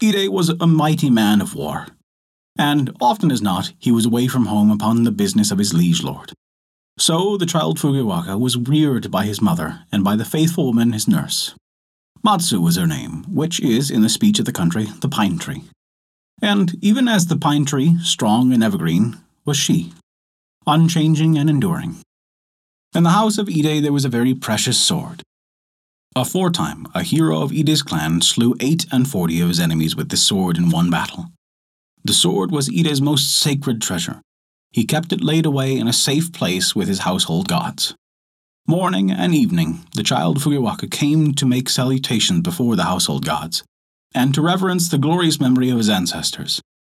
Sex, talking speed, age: male, 180 wpm, 30-49